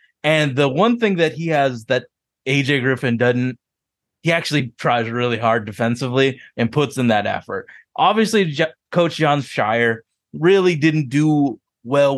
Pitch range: 120-155 Hz